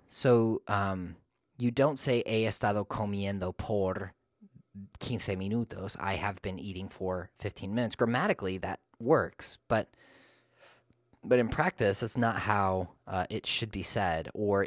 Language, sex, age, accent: English, male, 30-49, American